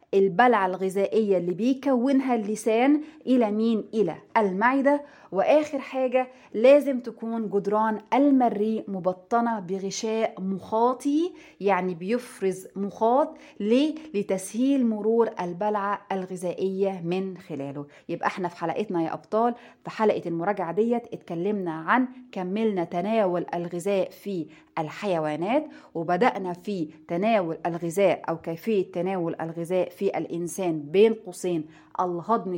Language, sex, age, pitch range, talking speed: Arabic, female, 20-39, 170-230 Hz, 105 wpm